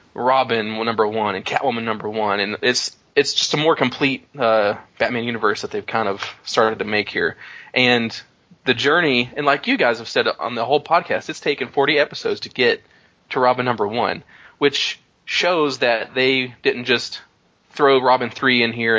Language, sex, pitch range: English, male, 110-140 Hz